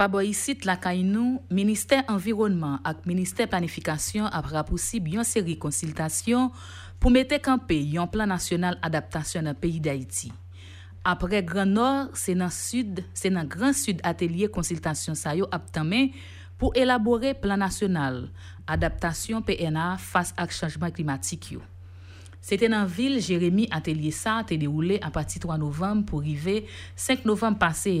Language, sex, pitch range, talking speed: French, female, 150-210 Hz, 135 wpm